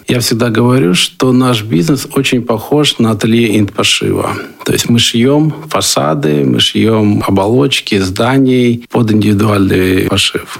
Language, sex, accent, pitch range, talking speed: Russian, male, native, 100-125 Hz, 130 wpm